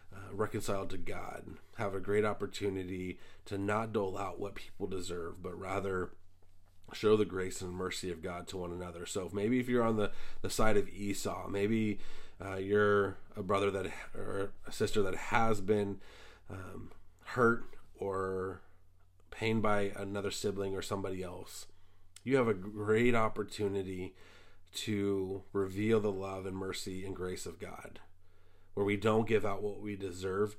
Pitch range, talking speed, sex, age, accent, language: 90-100 Hz, 165 wpm, male, 30-49, American, English